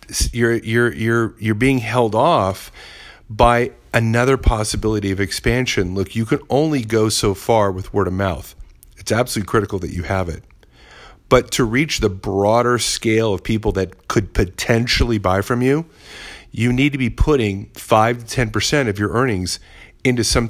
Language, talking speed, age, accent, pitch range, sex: English, 165 wpm, 40-59, American, 95-120 Hz, male